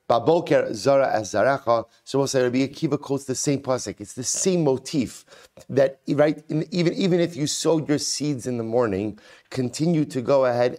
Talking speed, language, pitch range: 185 wpm, English, 125-155 Hz